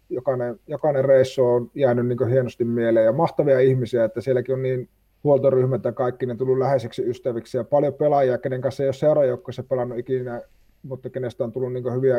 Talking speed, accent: 195 wpm, native